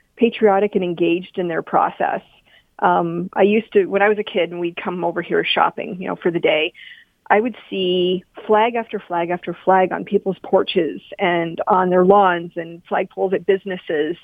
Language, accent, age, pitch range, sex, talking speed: English, American, 40-59, 175-205 Hz, female, 190 wpm